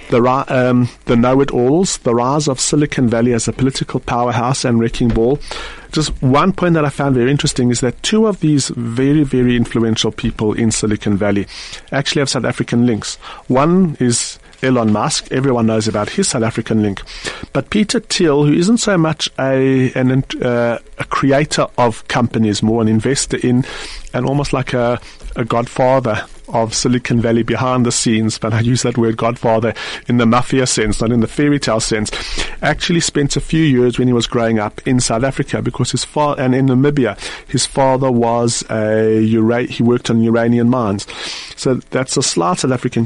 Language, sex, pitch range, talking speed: English, male, 115-140 Hz, 180 wpm